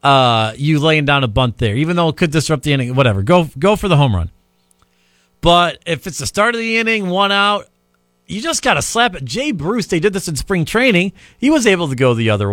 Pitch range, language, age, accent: 120-200 Hz, English, 40-59, American